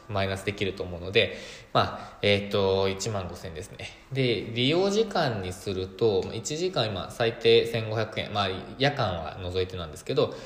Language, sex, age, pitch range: Japanese, male, 20-39, 95-135 Hz